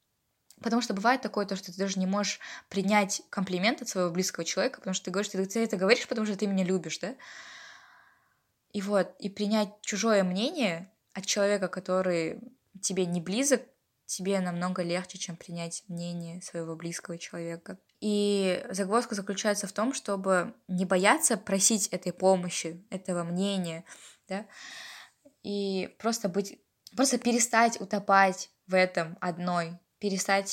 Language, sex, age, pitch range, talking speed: Russian, female, 20-39, 180-210 Hz, 145 wpm